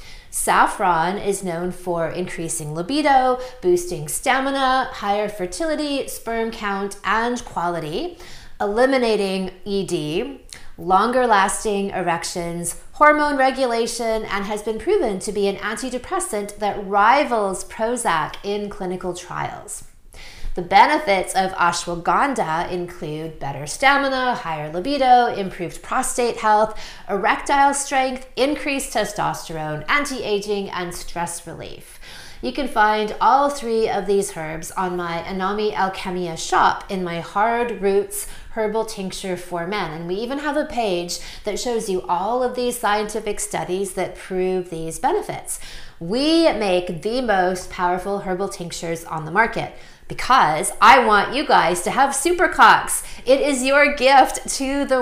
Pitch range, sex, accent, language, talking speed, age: 180-250 Hz, female, American, English, 130 wpm, 30-49